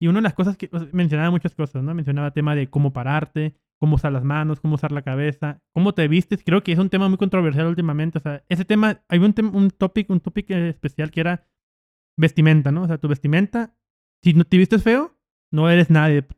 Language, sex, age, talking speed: Spanish, male, 20-39, 240 wpm